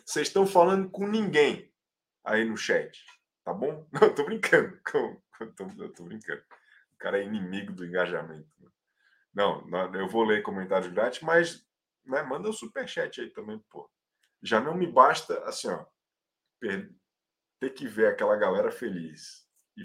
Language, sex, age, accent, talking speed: Portuguese, male, 20-39, Brazilian, 160 wpm